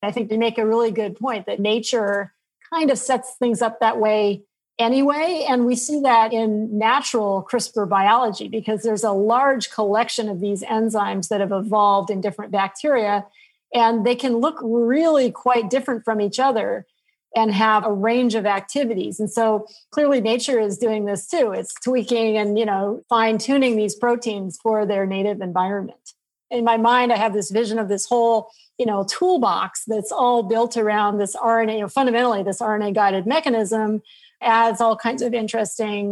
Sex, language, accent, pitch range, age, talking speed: female, English, American, 205-235 Hz, 40-59, 180 wpm